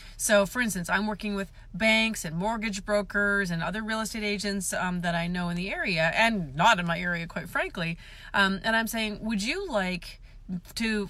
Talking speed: 200 wpm